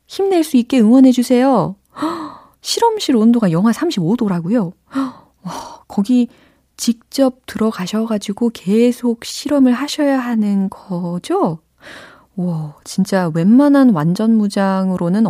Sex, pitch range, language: female, 165-235 Hz, Korean